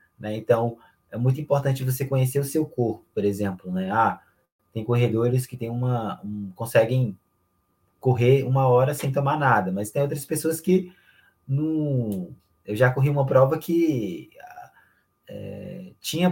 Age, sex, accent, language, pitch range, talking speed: 20-39, male, Brazilian, Portuguese, 110-140 Hz, 130 wpm